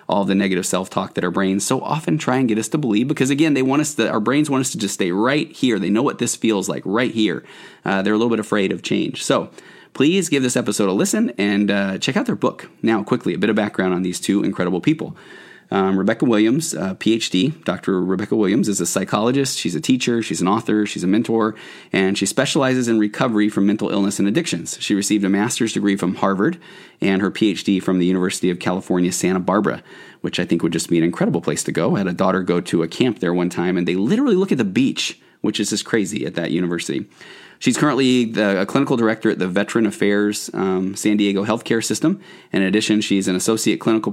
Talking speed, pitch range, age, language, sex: 235 wpm, 95-115 Hz, 30-49, English, male